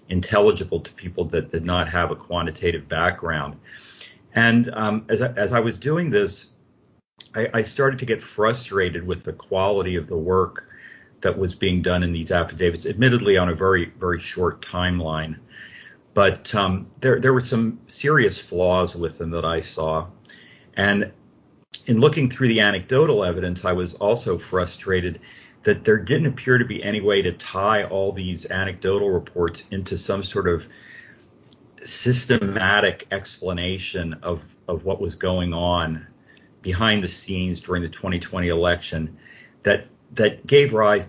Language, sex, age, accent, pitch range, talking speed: English, male, 50-69, American, 85-110 Hz, 155 wpm